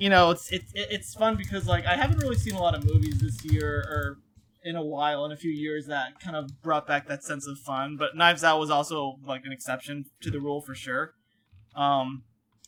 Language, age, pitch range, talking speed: English, 20-39, 135-165 Hz, 230 wpm